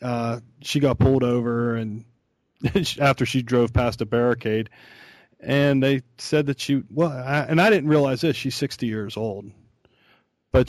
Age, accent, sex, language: 40-59, American, male, English